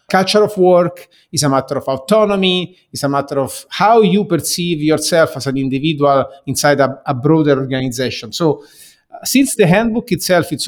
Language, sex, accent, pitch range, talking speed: English, male, Italian, 135-165 Hz, 175 wpm